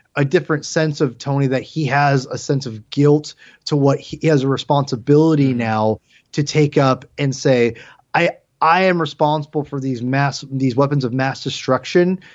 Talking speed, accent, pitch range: 180 wpm, American, 130-165 Hz